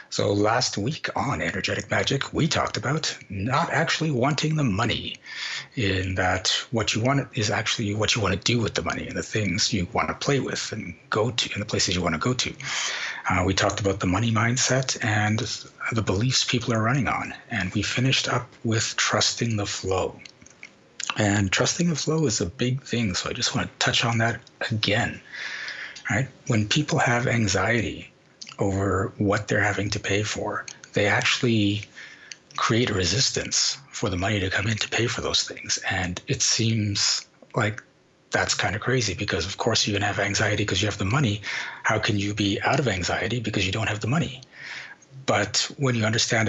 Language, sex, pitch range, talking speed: English, male, 100-125 Hz, 195 wpm